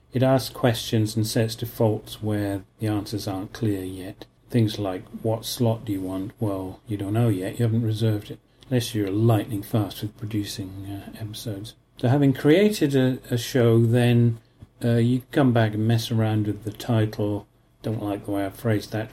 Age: 40-59